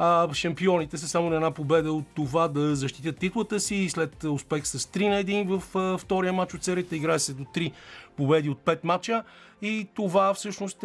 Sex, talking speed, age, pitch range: male, 195 wpm, 30-49, 145-180 Hz